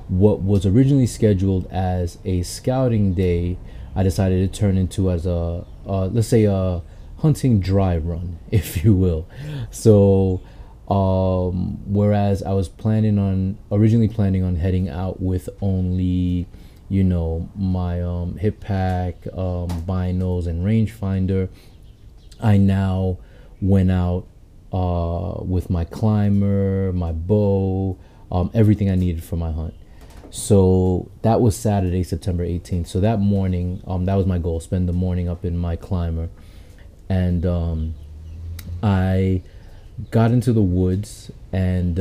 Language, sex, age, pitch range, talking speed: English, male, 30-49, 90-100 Hz, 135 wpm